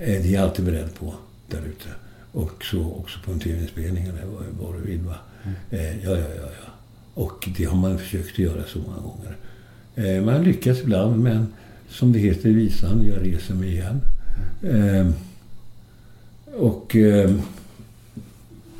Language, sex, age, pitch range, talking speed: Swedish, male, 60-79, 95-115 Hz, 145 wpm